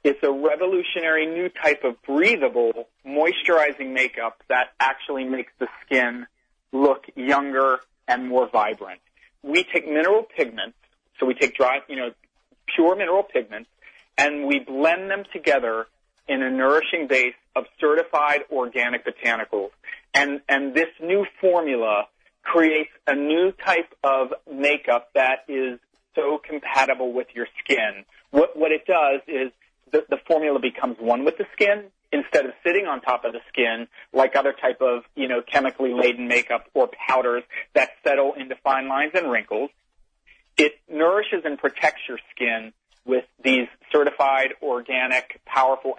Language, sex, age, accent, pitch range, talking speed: English, male, 40-59, American, 125-155 Hz, 145 wpm